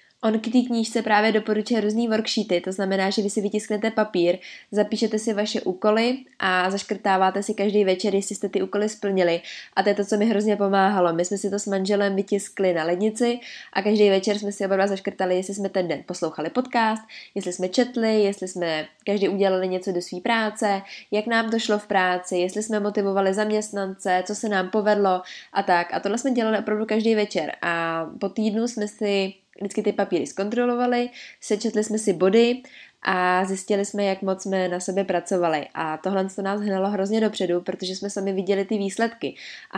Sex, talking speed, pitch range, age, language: female, 195 wpm, 185-215 Hz, 20-39, Czech